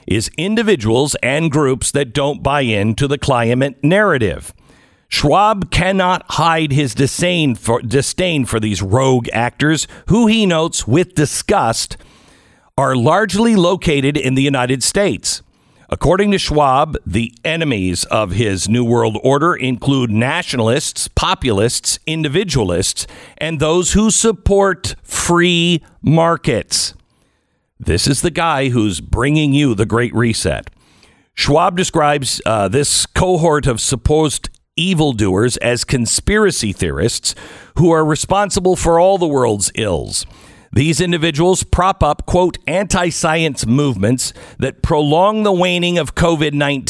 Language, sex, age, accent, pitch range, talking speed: English, male, 50-69, American, 120-170 Hz, 120 wpm